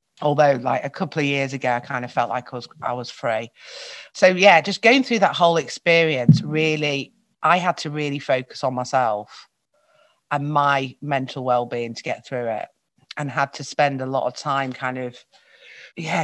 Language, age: English, 30-49